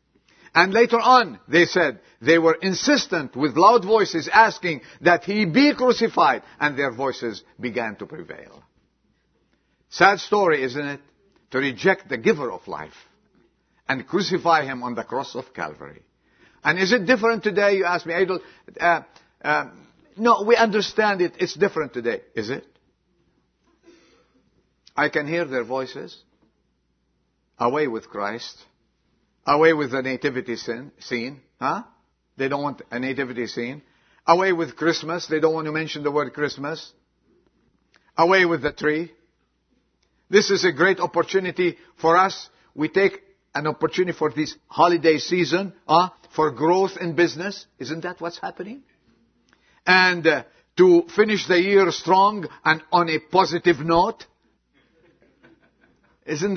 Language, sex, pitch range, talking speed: English, male, 155-200 Hz, 140 wpm